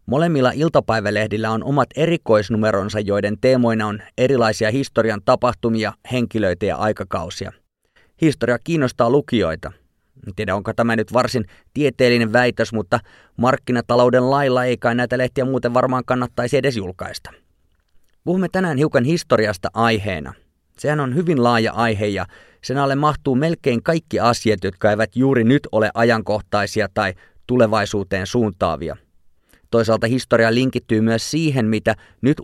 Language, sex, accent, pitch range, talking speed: Finnish, male, native, 105-130 Hz, 130 wpm